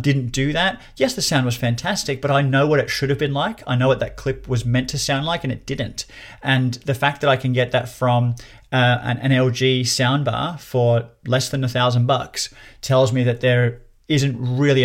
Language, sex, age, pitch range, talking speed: English, male, 30-49, 125-140 Hz, 220 wpm